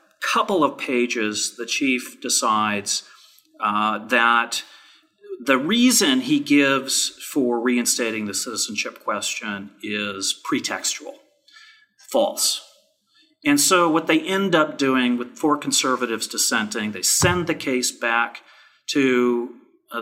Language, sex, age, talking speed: English, male, 40-59, 115 wpm